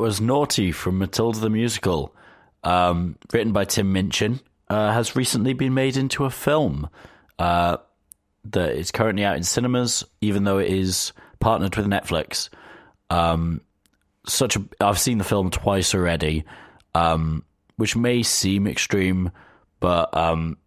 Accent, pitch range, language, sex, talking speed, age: British, 90-110 Hz, English, male, 140 wpm, 30-49